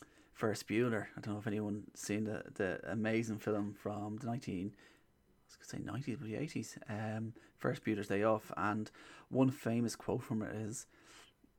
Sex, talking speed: male, 180 wpm